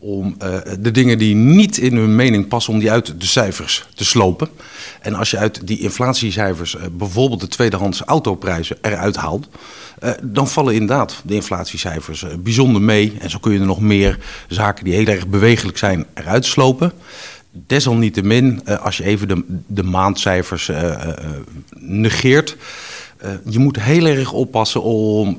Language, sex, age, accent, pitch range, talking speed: Dutch, male, 50-69, Dutch, 95-120 Hz, 170 wpm